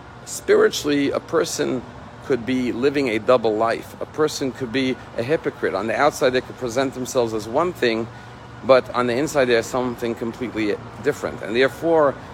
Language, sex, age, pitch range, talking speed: English, male, 50-69, 115-145 Hz, 175 wpm